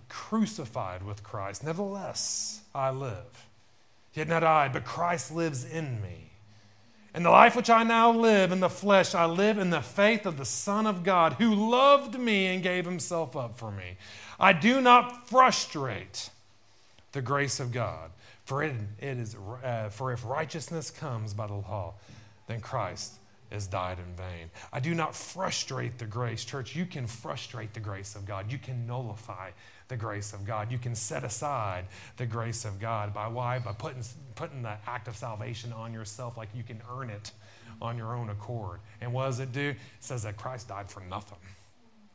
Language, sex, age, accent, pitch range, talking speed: English, male, 30-49, American, 105-145 Hz, 185 wpm